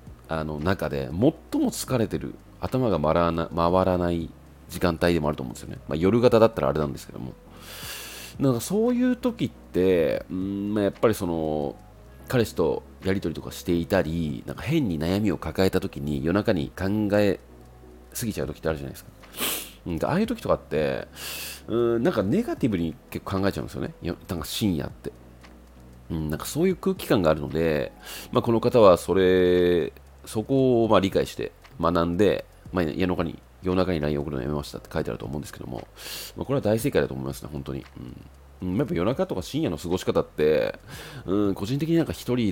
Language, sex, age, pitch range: Japanese, male, 40-59, 75-105 Hz